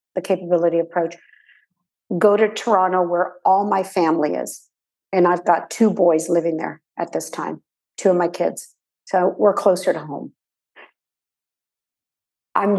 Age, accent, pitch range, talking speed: 50-69, American, 180-255 Hz, 145 wpm